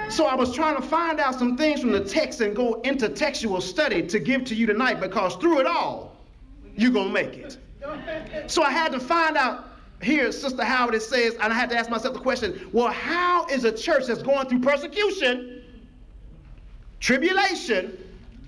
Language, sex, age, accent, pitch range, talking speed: English, male, 40-59, American, 230-305 Hz, 195 wpm